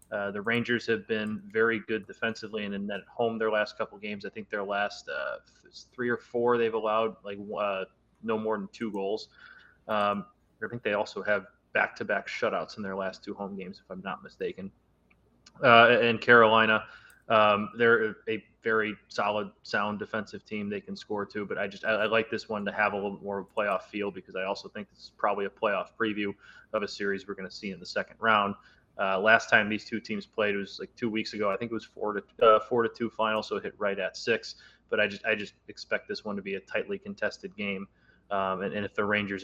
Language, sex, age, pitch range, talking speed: English, male, 20-39, 100-120 Hz, 235 wpm